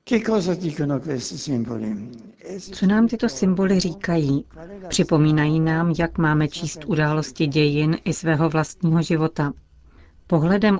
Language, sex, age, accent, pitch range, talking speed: Czech, female, 40-59, native, 150-175 Hz, 95 wpm